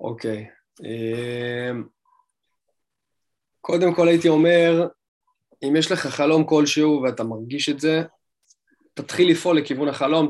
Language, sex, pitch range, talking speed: Hebrew, male, 125-155 Hz, 110 wpm